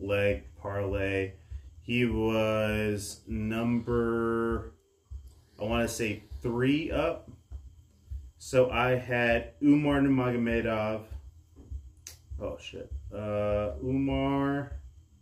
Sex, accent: male, American